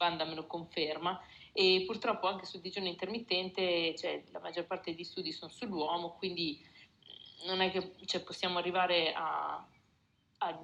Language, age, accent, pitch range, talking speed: Italian, 30-49, native, 165-185 Hz, 145 wpm